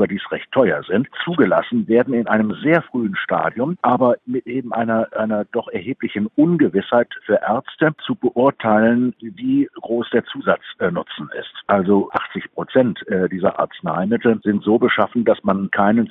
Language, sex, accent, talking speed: German, male, German, 150 wpm